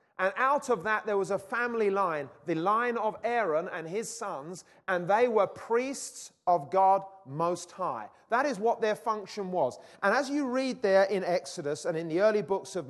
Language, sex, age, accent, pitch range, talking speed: English, male, 40-59, British, 180-235 Hz, 200 wpm